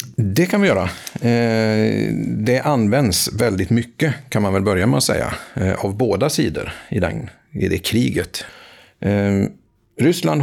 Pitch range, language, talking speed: 100-120 Hz, Swedish, 140 wpm